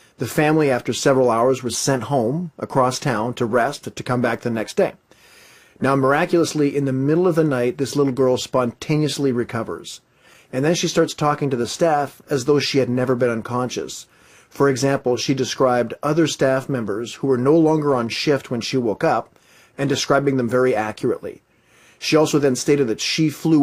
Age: 40-59